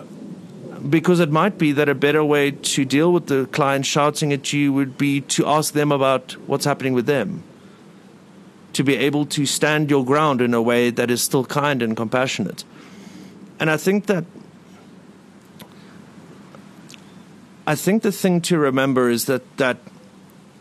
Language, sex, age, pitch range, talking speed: English, male, 50-69, 130-185 Hz, 160 wpm